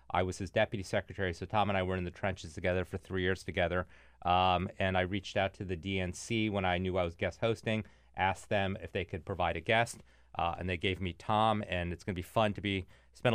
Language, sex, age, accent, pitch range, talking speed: English, male, 30-49, American, 90-110 Hz, 250 wpm